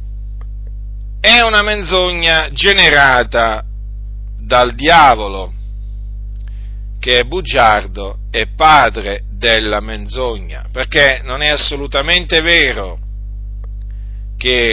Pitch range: 100-150 Hz